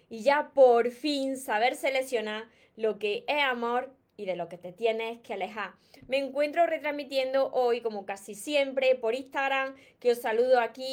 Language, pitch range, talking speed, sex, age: Spanish, 230-290 Hz, 170 wpm, female, 20-39